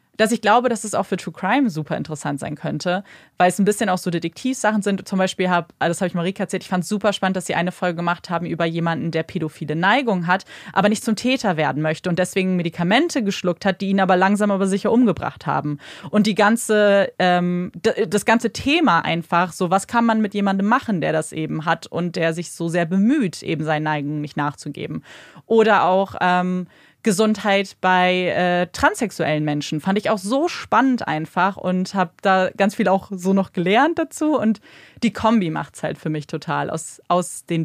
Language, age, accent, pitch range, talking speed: German, 30-49, German, 170-210 Hz, 205 wpm